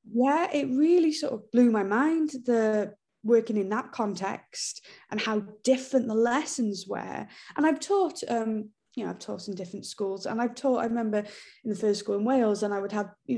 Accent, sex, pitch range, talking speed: British, female, 195-235 Hz, 210 wpm